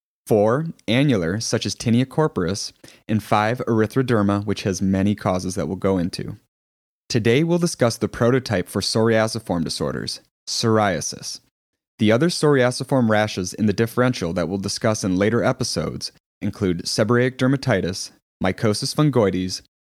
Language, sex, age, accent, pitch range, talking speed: English, male, 30-49, American, 95-125 Hz, 135 wpm